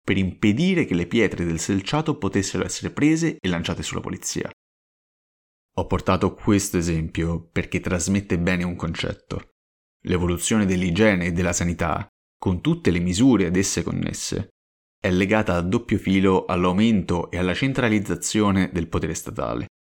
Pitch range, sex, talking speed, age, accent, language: 85-100 Hz, male, 140 wpm, 30-49, native, Italian